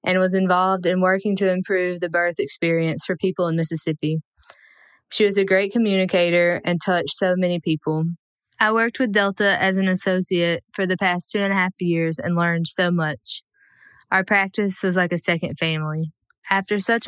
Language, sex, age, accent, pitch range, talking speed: English, female, 10-29, American, 160-205 Hz, 185 wpm